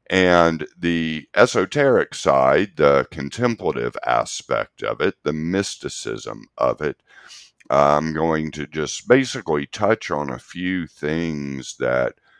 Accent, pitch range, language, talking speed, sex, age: American, 75-100 Hz, English, 115 wpm, male, 50-69